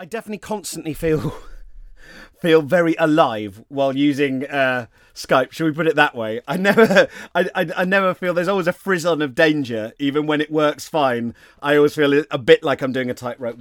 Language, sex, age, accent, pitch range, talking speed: English, male, 30-49, British, 120-170 Hz, 200 wpm